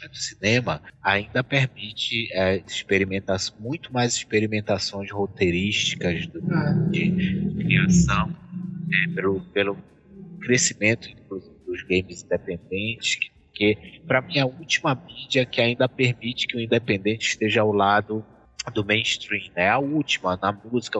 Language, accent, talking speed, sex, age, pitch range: Portuguese, Brazilian, 135 wpm, male, 20-39, 100-130 Hz